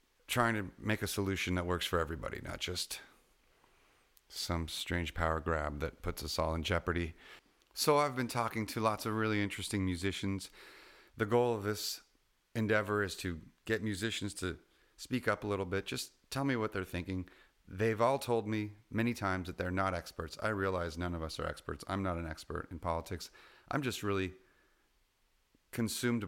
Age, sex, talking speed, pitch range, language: 30-49, male, 180 wpm, 90-105 Hz, English